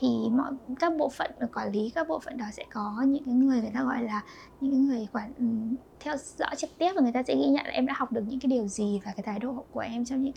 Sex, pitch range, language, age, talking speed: female, 230-280 Hz, Vietnamese, 20-39, 300 wpm